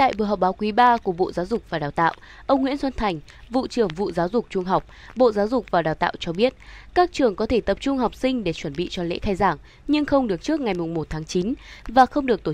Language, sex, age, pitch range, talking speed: Vietnamese, female, 20-39, 180-245 Hz, 280 wpm